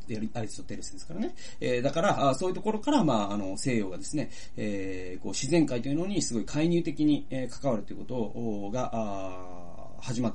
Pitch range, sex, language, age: 110-185 Hz, male, Japanese, 30-49